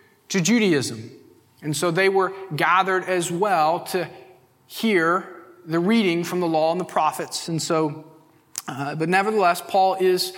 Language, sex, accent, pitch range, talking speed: English, male, American, 165-205 Hz, 150 wpm